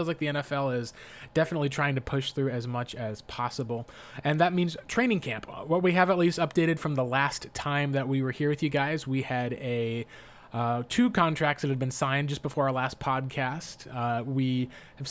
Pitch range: 135-160 Hz